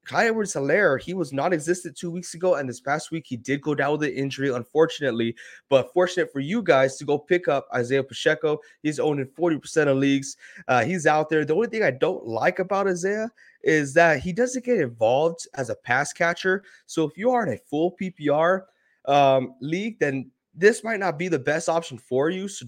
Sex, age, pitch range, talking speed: male, 20-39, 130-170 Hz, 210 wpm